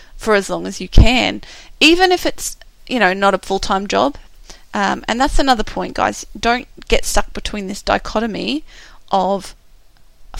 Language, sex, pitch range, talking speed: English, female, 195-245 Hz, 165 wpm